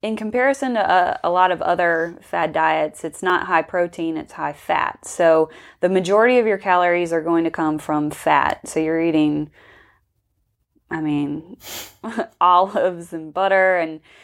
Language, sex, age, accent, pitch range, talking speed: English, female, 20-39, American, 160-210 Hz, 160 wpm